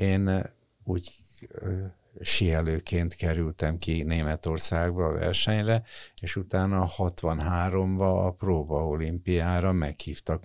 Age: 60-79